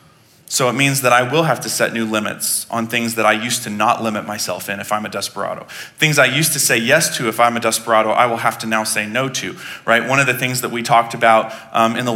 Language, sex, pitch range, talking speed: English, male, 115-145 Hz, 275 wpm